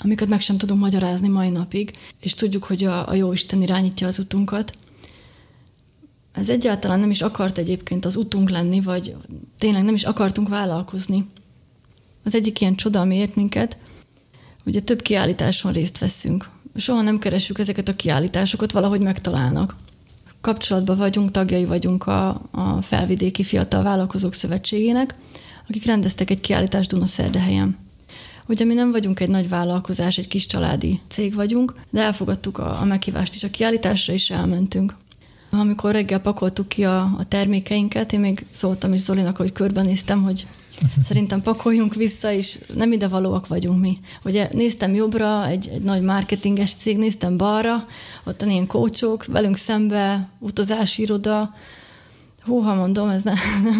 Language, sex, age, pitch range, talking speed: Hungarian, female, 30-49, 180-210 Hz, 145 wpm